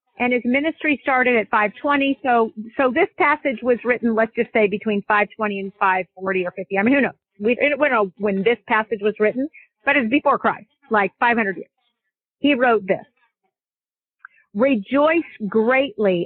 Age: 50-69